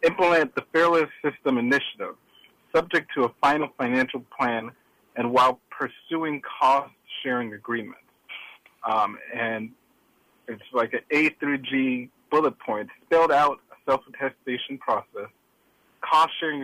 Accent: American